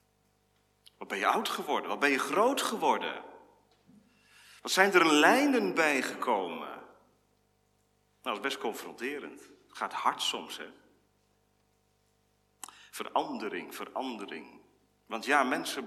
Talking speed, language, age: 115 wpm, Dutch, 40-59